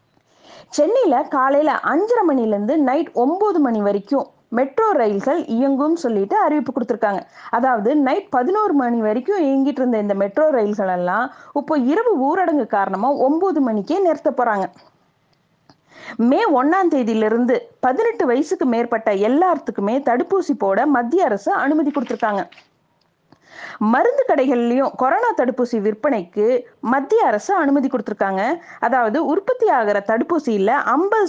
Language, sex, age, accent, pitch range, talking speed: Tamil, female, 30-49, native, 225-320 Hz, 115 wpm